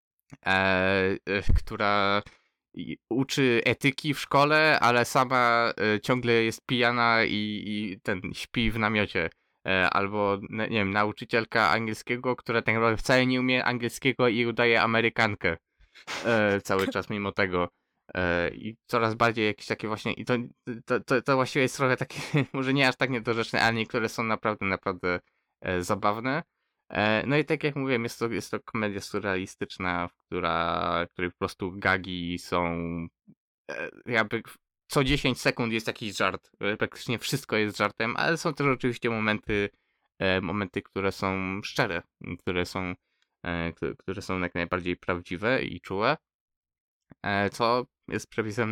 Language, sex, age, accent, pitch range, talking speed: Polish, male, 20-39, native, 95-120 Hz, 130 wpm